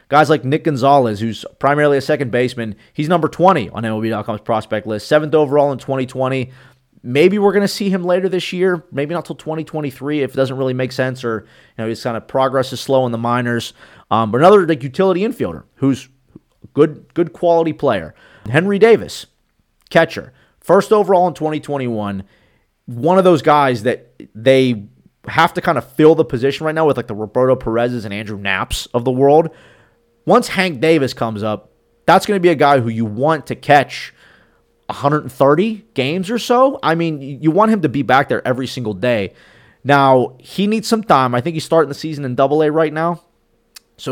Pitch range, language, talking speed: 120-160 Hz, English, 195 wpm